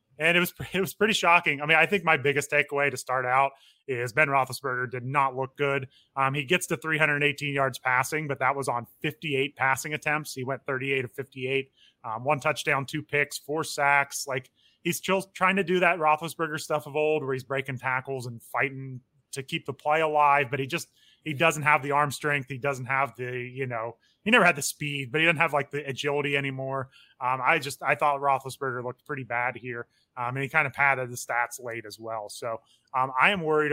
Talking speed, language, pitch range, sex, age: 225 wpm, English, 130-150 Hz, male, 20-39